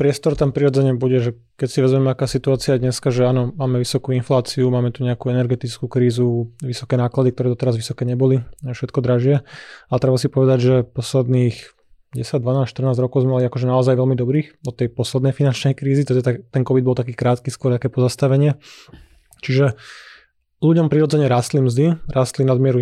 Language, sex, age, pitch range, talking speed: Slovak, male, 20-39, 125-135 Hz, 180 wpm